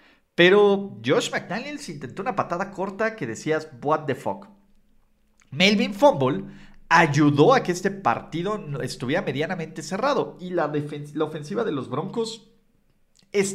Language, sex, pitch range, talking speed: Spanish, male, 140-195 Hz, 135 wpm